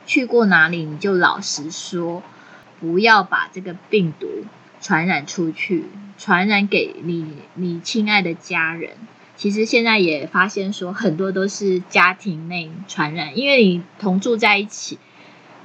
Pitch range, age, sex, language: 170-205 Hz, 20-39, female, Chinese